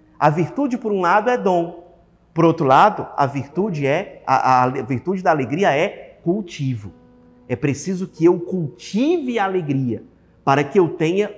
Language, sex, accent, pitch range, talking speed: Portuguese, male, Brazilian, 150-210 Hz, 150 wpm